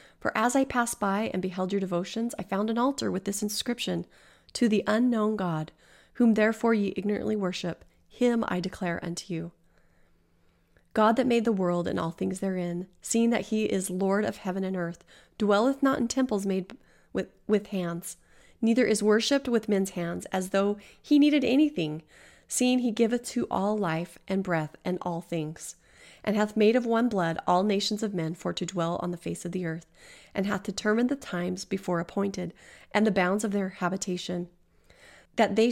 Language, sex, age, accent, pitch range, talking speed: English, female, 30-49, American, 175-225 Hz, 190 wpm